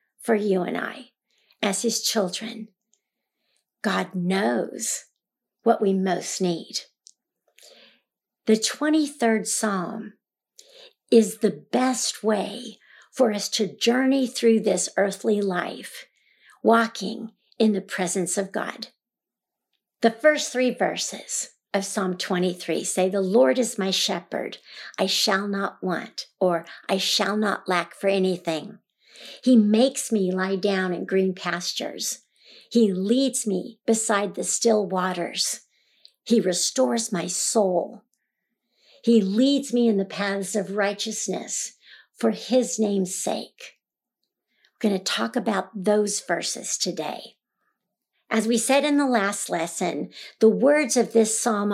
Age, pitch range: 60-79, 190-235 Hz